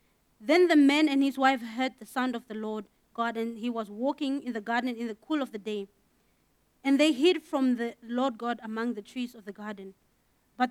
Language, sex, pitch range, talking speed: English, female, 240-315 Hz, 225 wpm